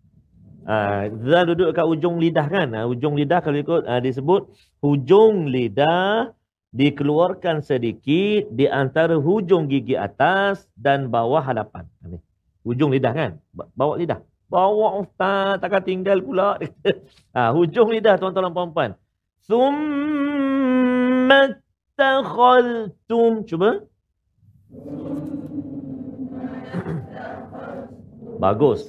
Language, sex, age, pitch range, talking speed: Malayalam, male, 50-69, 130-190 Hz, 90 wpm